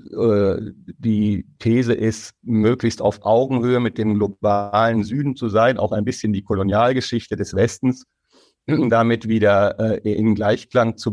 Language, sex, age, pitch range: German, male, 50-69, 100-115 Hz